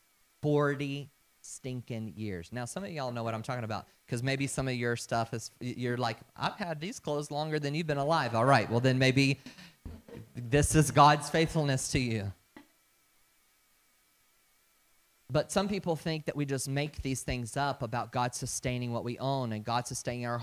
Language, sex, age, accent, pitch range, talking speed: English, male, 30-49, American, 120-145 Hz, 180 wpm